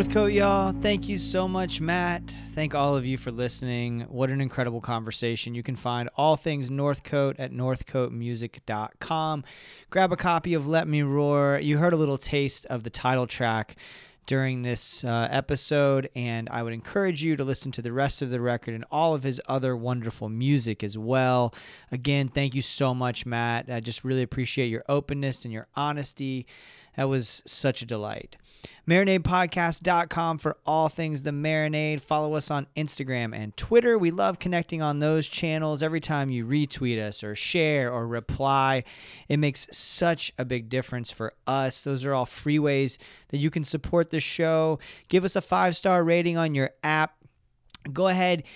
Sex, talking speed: male, 175 wpm